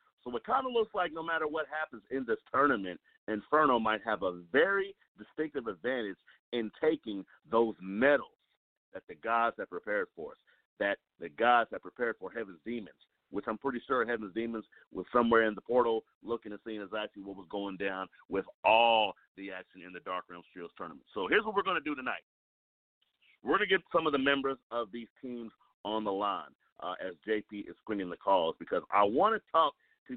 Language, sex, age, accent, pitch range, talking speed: English, male, 50-69, American, 105-150 Hz, 205 wpm